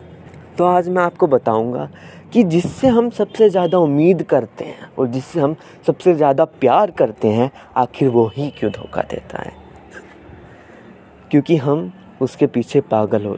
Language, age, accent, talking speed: Hindi, 20-39, native, 150 wpm